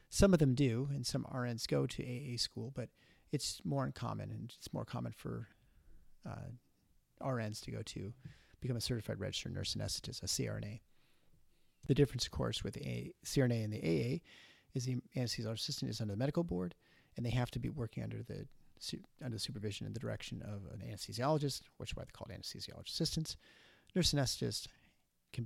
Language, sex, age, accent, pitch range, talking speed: English, male, 40-59, American, 105-140 Hz, 195 wpm